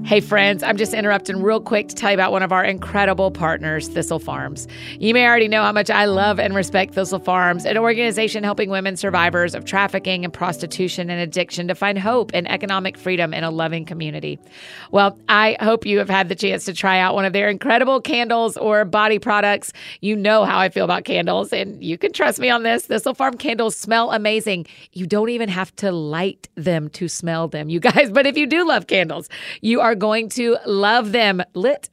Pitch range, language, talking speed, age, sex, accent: 185-225 Hz, English, 215 wpm, 40-59, female, American